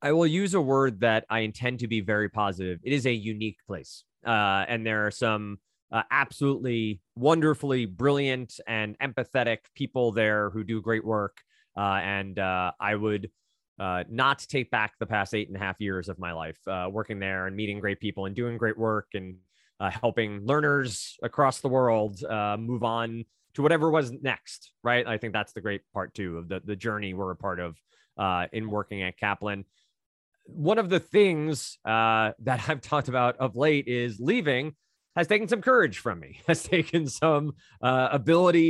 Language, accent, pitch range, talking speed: English, American, 105-140 Hz, 190 wpm